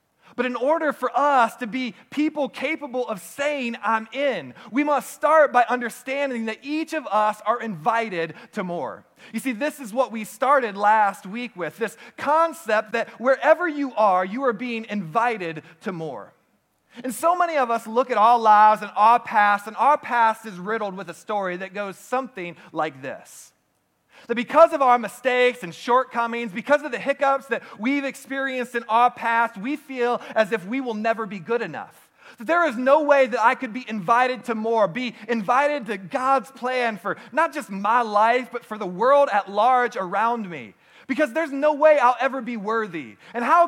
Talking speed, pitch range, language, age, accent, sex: 190 wpm, 215-270 Hz, English, 30-49, American, male